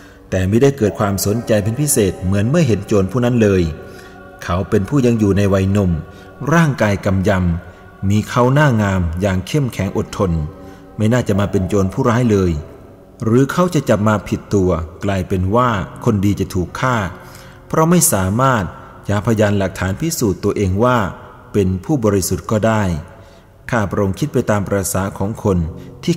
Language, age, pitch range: Thai, 30-49, 95-120 Hz